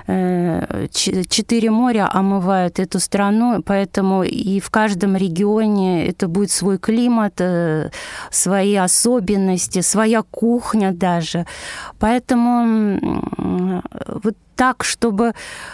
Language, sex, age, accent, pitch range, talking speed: Russian, female, 20-39, native, 185-225 Hz, 90 wpm